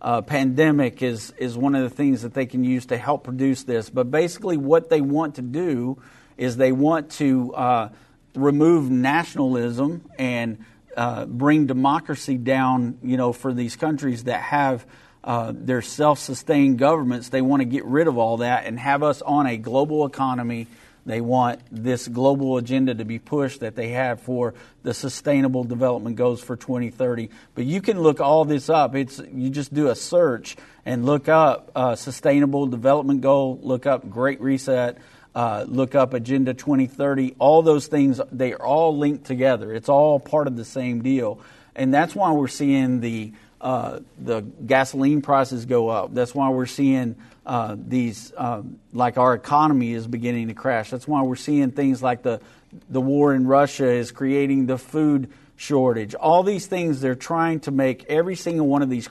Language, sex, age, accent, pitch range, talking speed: English, male, 50-69, American, 125-145 Hz, 180 wpm